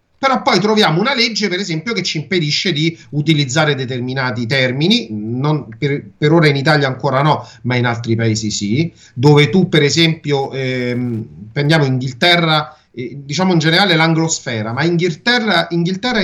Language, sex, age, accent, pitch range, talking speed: Italian, male, 40-59, native, 125-170 Hz, 155 wpm